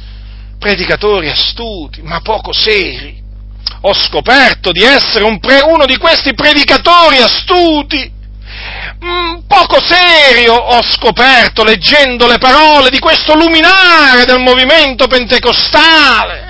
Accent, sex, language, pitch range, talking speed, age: native, male, Italian, 205-295 Hz, 100 wpm, 40-59